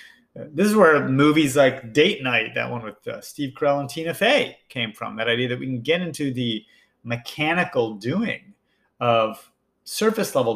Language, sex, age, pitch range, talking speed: English, male, 30-49, 125-170 Hz, 175 wpm